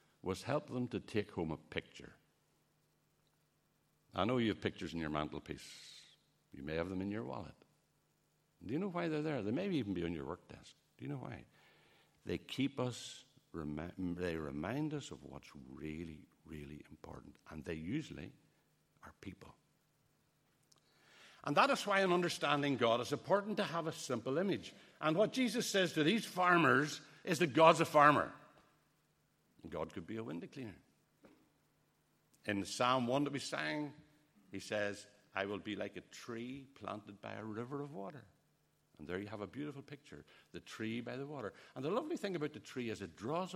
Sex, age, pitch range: male, 60-79, 100-165 Hz